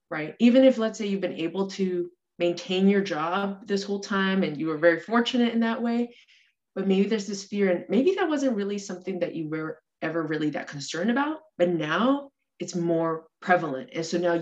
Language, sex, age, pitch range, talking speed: English, female, 20-39, 165-205 Hz, 210 wpm